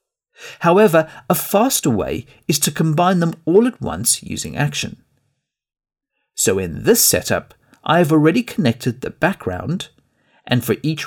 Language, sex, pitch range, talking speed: English, male, 115-175 Hz, 140 wpm